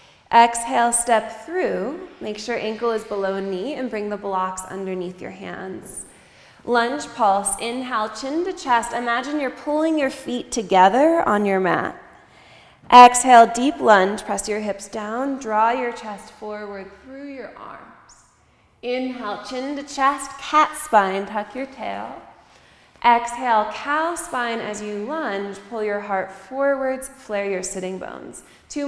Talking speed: 145 wpm